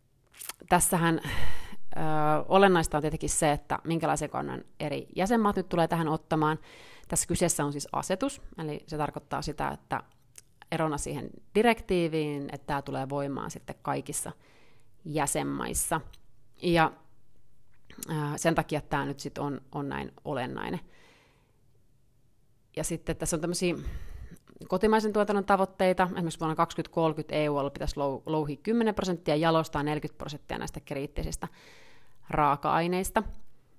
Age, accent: 30-49, native